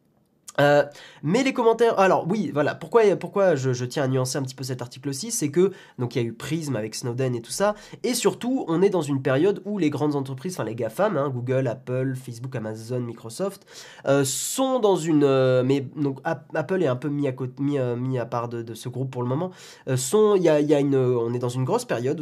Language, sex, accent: French, male, French